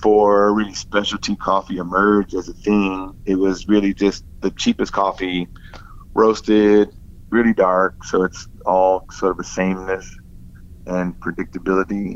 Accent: American